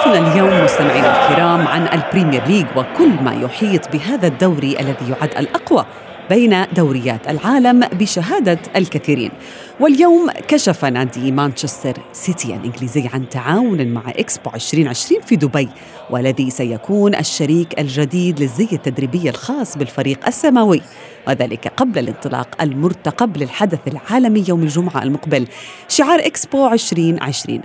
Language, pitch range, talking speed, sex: Arabic, 140-210 Hz, 120 wpm, female